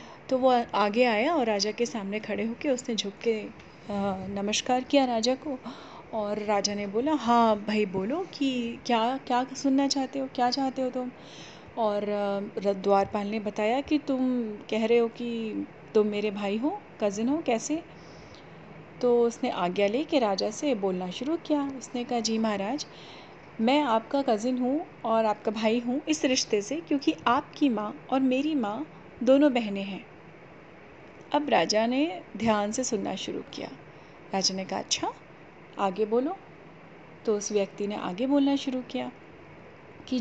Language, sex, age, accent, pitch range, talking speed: Hindi, female, 30-49, native, 210-260 Hz, 160 wpm